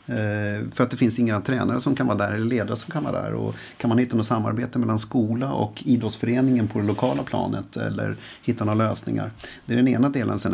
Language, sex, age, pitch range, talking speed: English, male, 40-59, 115-130 Hz, 230 wpm